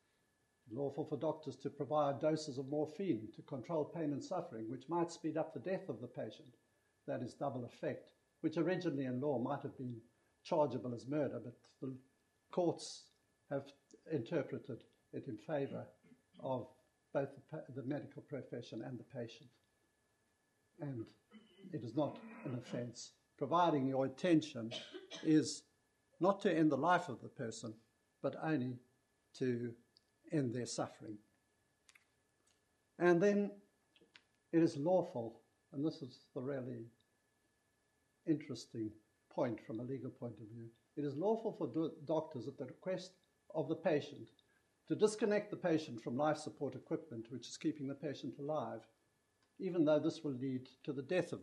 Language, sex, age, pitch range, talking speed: English, male, 60-79, 120-155 Hz, 150 wpm